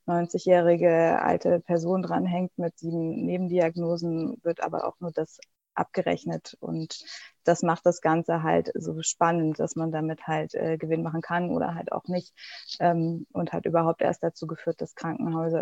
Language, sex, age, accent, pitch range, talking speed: German, female, 20-39, German, 175-205 Hz, 160 wpm